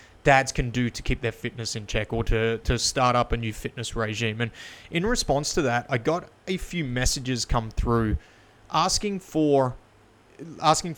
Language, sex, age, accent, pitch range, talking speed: English, male, 30-49, Australian, 115-140 Hz, 180 wpm